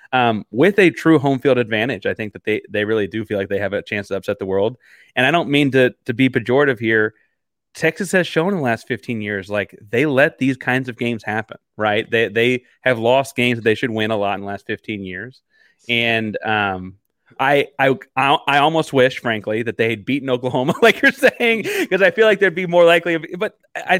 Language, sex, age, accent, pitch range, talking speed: English, male, 30-49, American, 115-160 Hz, 235 wpm